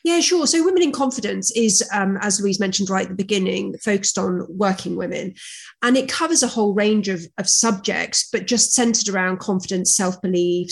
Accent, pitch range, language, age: British, 185-225 Hz, English, 30-49